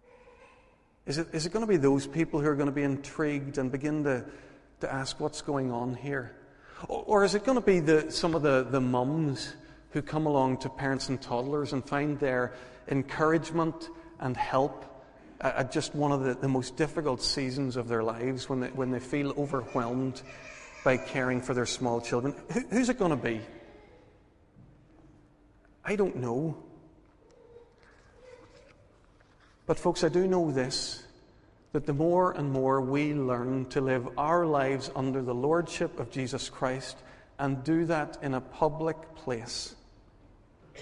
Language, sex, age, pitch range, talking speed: English, male, 40-59, 125-155 Hz, 160 wpm